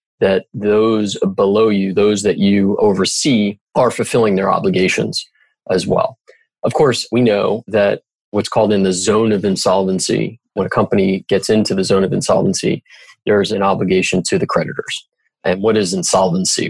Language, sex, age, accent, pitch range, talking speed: English, male, 30-49, American, 95-125 Hz, 160 wpm